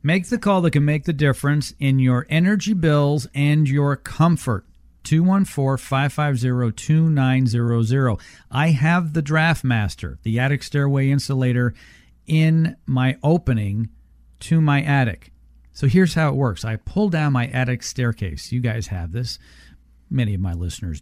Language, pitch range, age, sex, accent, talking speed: English, 115-155 Hz, 50-69, male, American, 145 wpm